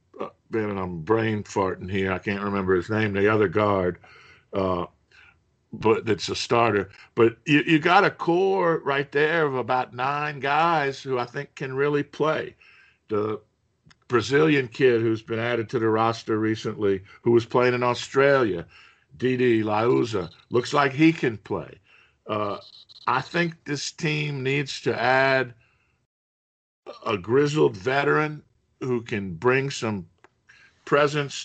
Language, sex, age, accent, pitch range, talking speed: English, male, 50-69, American, 110-140 Hz, 145 wpm